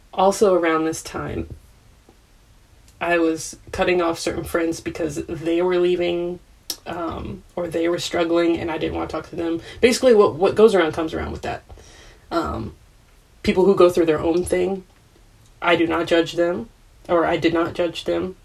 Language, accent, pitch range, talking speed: English, American, 110-175 Hz, 180 wpm